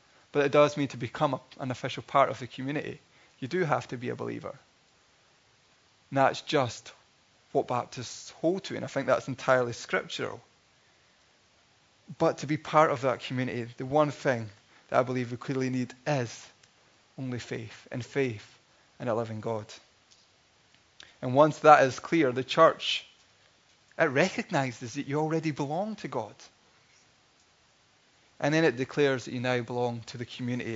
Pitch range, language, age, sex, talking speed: 125-160 Hz, English, 20-39, male, 165 wpm